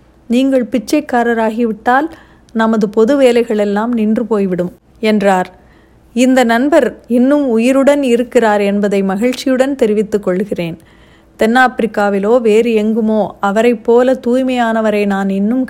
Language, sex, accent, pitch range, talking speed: Tamil, female, native, 200-255 Hz, 95 wpm